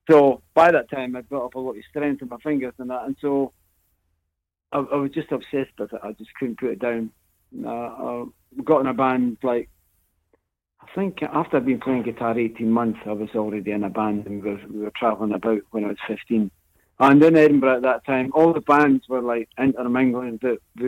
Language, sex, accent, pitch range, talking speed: English, male, British, 105-135 Hz, 220 wpm